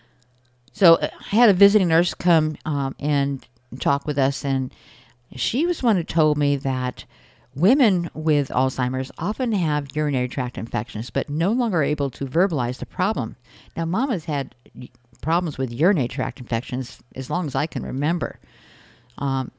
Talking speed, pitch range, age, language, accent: 160 wpm, 130-165 Hz, 50-69, English, American